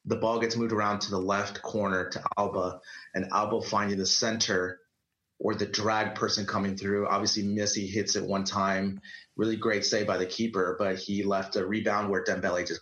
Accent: American